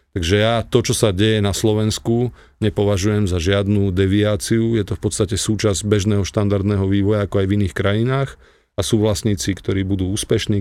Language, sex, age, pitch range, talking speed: Slovak, male, 40-59, 100-110 Hz, 175 wpm